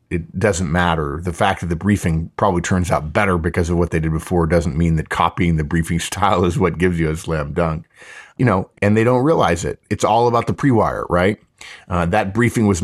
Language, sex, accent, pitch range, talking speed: English, male, American, 85-105 Hz, 230 wpm